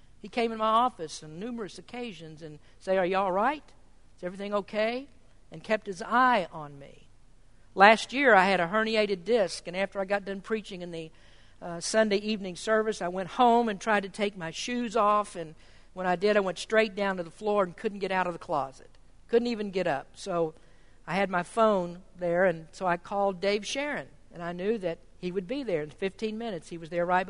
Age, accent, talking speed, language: 50-69, American, 220 wpm, English